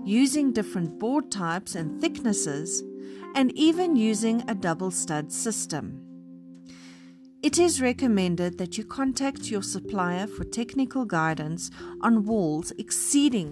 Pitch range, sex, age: 170-255 Hz, female, 40-59